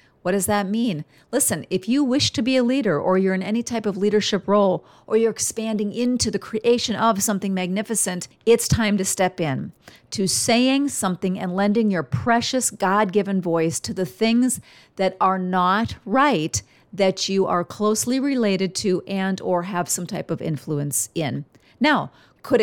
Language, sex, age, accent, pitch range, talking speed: English, female, 40-59, American, 180-220 Hz, 175 wpm